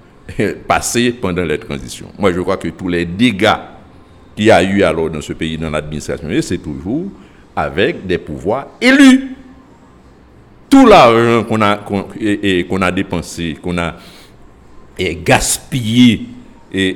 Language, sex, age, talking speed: French, male, 60-79, 150 wpm